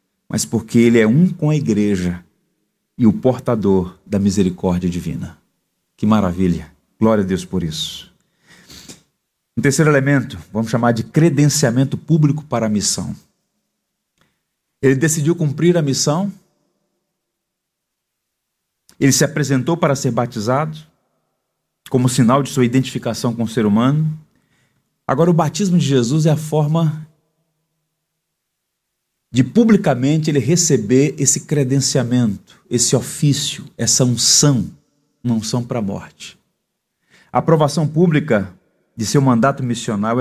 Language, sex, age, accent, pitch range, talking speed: Portuguese, male, 40-59, Brazilian, 110-155 Hz, 120 wpm